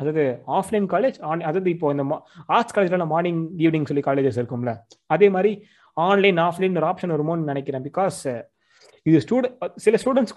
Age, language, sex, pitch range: 20-39, Tamil, male, 145-195 Hz